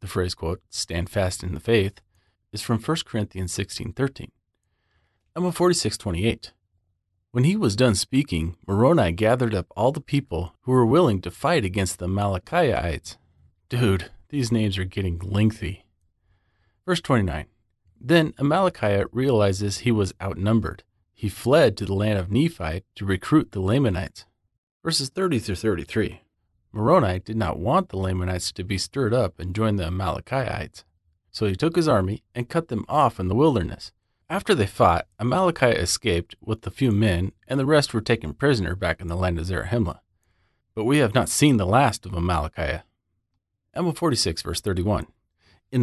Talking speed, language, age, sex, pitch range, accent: 160 wpm, English, 30-49, male, 90-120 Hz, American